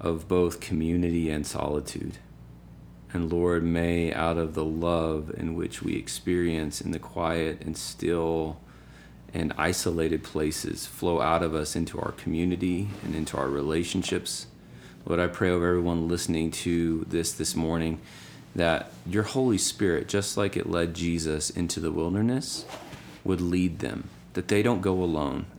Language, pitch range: English, 80-90 Hz